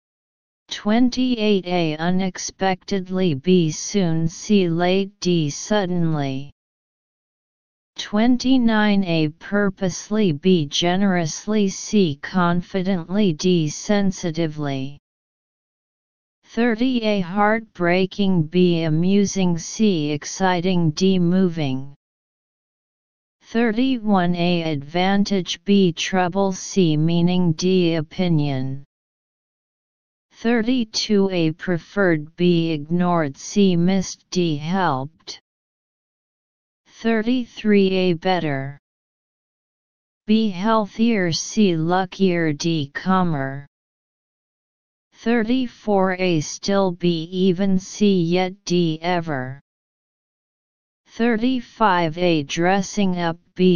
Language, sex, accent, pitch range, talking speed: English, female, American, 165-200 Hz, 75 wpm